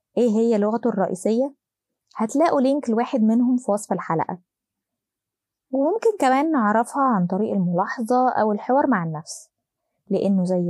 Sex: female